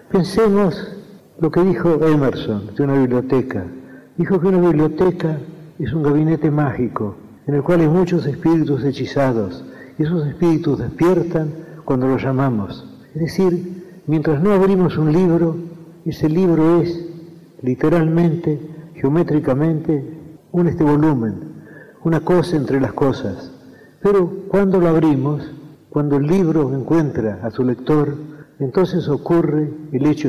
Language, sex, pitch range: Spanish, male, 135-170 Hz